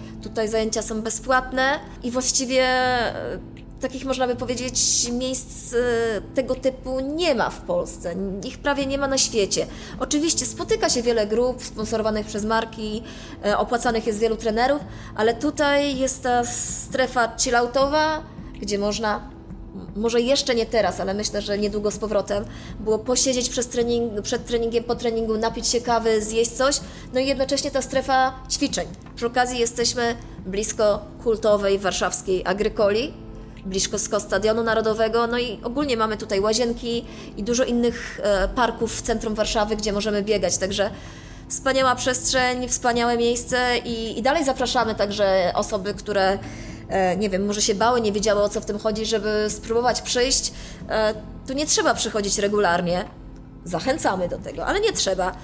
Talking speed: 145 wpm